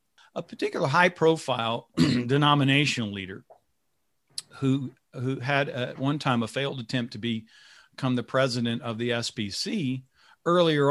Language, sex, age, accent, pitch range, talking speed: English, male, 50-69, American, 115-145 Hz, 125 wpm